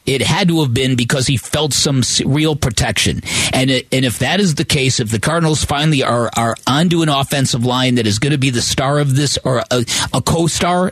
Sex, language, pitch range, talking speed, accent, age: male, English, 125-170 Hz, 230 wpm, American, 40-59